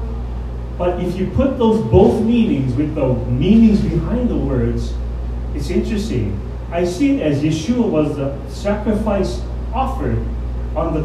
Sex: male